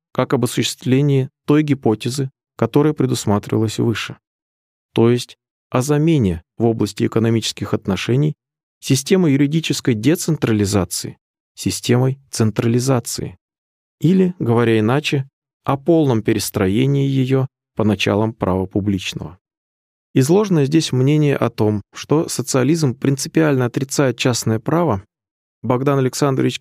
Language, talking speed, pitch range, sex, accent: Russian, 100 wpm, 110-145 Hz, male, native